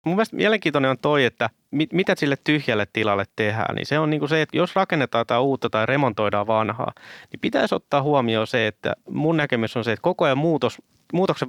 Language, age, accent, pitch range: Finnish, 20-39, native, 110-150 Hz